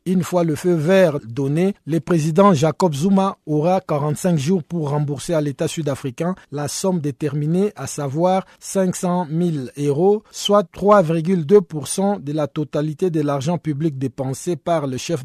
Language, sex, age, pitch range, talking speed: French, male, 50-69, 150-185 Hz, 150 wpm